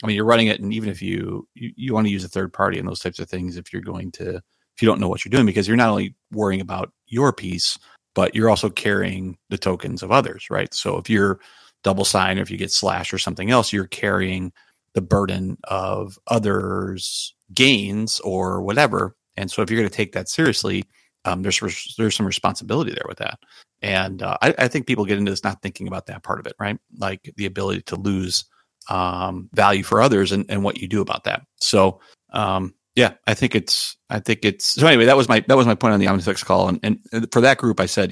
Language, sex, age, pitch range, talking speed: English, male, 30-49, 95-110 Hz, 240 wpm